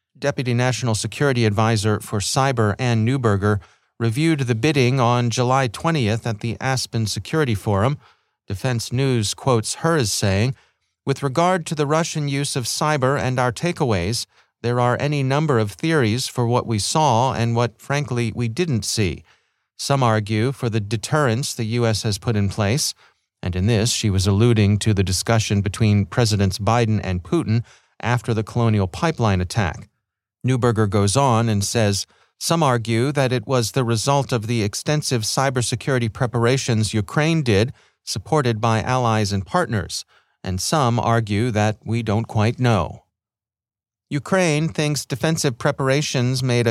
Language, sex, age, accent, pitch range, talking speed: English, male, 40-59, American, 110-130 Hz, 155 wpm